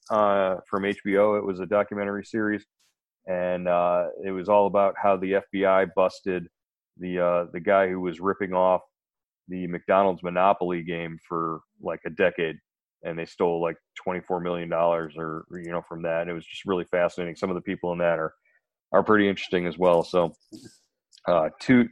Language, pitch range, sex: English, 90-105 Hz, male